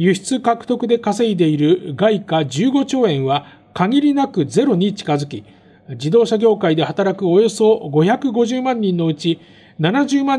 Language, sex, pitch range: Japanese, male, 155-230 Hz